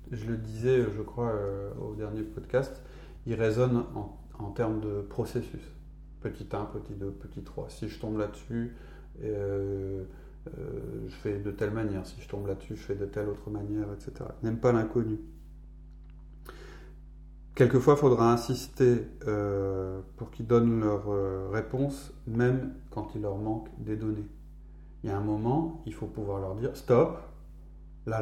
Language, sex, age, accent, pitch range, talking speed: French, male, 30-49, French, 100-125 Hz, 160 wpm